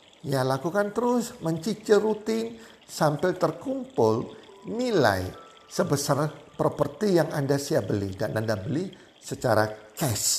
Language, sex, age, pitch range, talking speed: Indonesian, male, 50-69, 125-185 Hz, 110 wpm